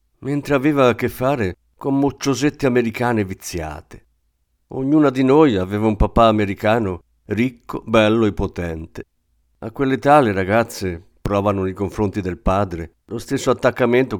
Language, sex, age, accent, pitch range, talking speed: Italian, male, 50-69, native, 90-125 Hz, 135 wpm